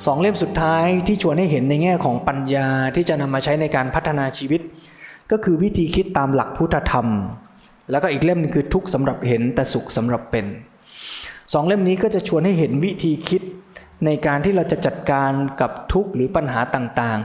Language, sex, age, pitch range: Thai, male, 20-39, 130-170 Hz